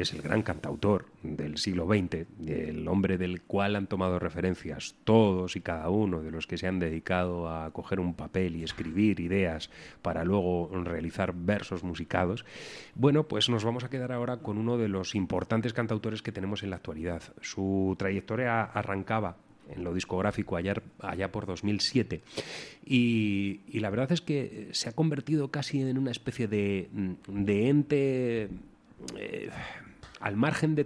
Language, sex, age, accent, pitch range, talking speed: Spanish, male, 30-49, Spanish, 95-120 Hz, 165 wpm